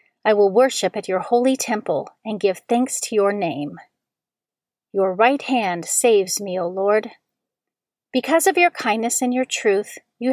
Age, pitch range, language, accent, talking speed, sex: 40-59, 195-250 Hz, English, American, 165 wpm, female